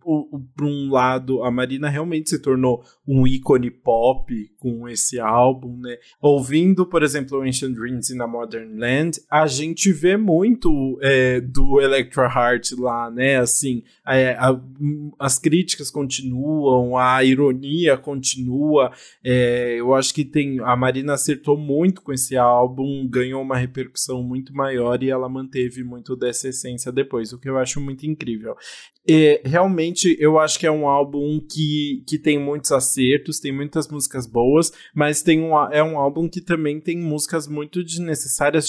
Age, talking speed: 20-39, 150 wpm